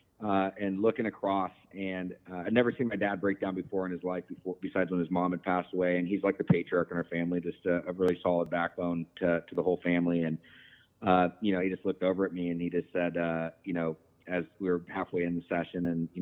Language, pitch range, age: English, 85-100 Hz, 30-49